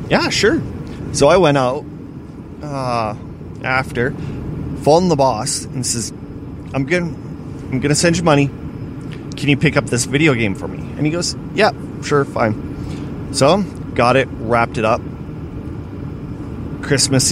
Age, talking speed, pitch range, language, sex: 30-49, 145 wpm, 130-155 Hz, English, male